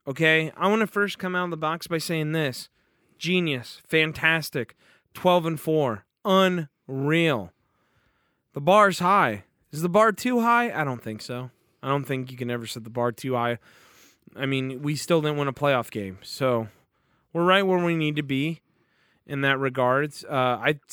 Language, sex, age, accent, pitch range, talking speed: English, male, 30-49, American, 130-185 Hz, 185 wpm